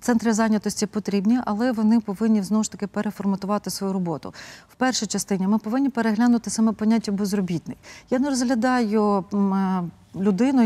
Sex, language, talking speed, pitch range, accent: female, Ukrainian, 140 wpm, 205-240 Hz, native